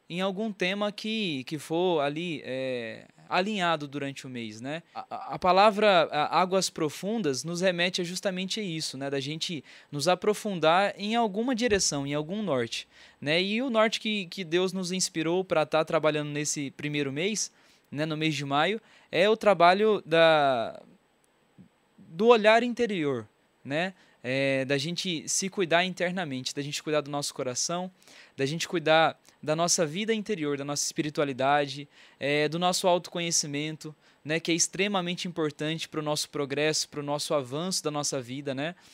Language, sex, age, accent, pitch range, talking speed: Portuguese, male, 20-39, Brazilian, 145-190 Hz, 165 wpm